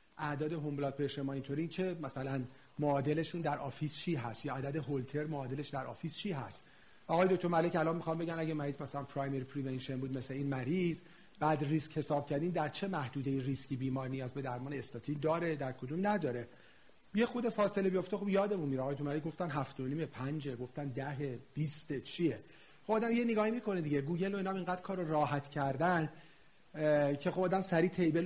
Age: 40-59